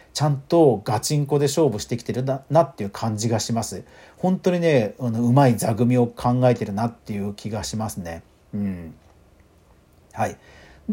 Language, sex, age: Japanese, male, 40-59